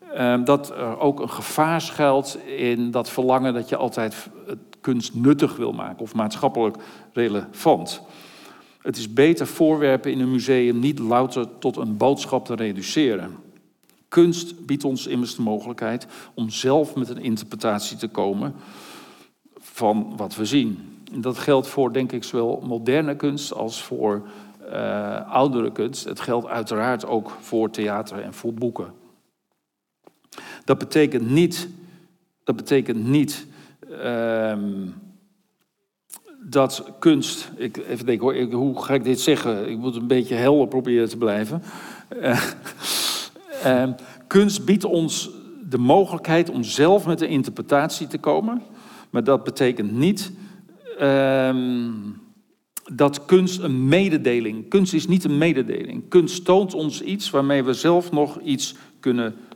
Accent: Dutch